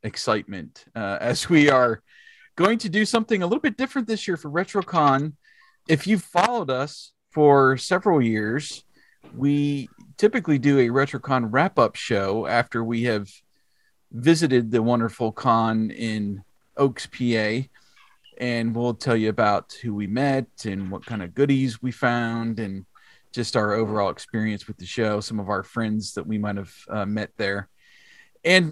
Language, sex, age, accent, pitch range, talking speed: English, male, 40-59, American, 115-140 Hz, 160 wpm